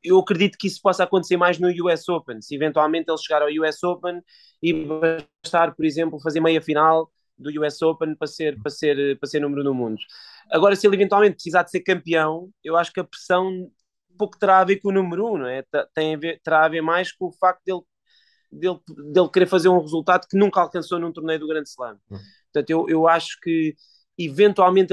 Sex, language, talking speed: male, Portuguese, 215 wpm